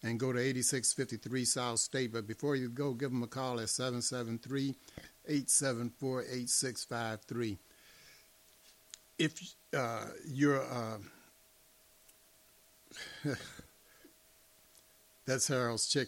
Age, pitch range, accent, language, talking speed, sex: 60-79, 115-135 Hz, American, English, 65 wpm, male